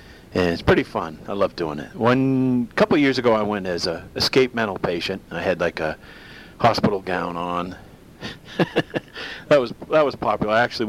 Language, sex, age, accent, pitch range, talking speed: English, male, 50-69, American, 85-120 Hz, 185 wpm